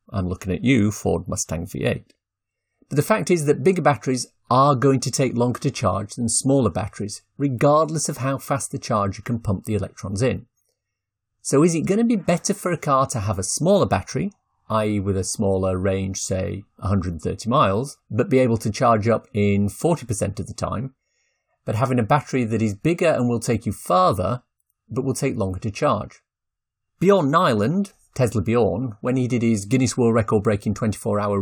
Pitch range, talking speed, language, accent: 105-145 Hz, 190 wpm, English, British